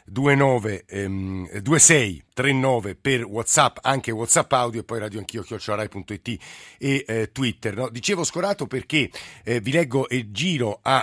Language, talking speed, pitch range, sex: Italian, 130 wpm, 105-135 Hz, male